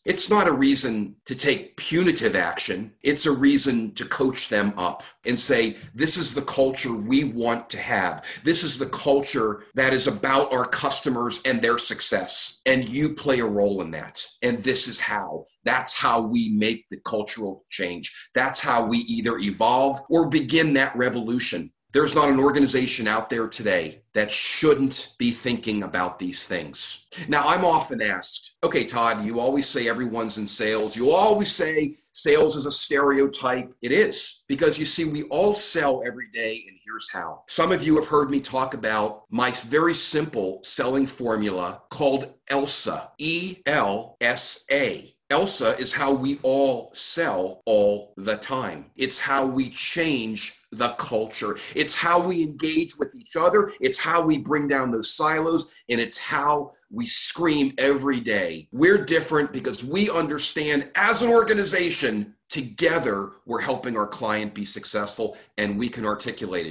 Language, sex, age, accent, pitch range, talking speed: English, male, 40-59, American, 115-150 Hz, 165 wpm